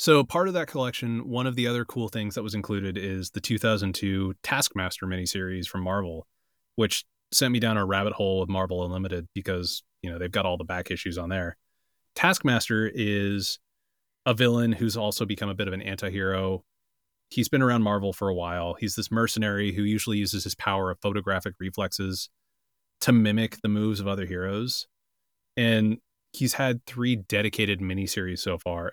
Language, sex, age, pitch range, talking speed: English, male, 30-49, 95-115 Hz, 180 wpm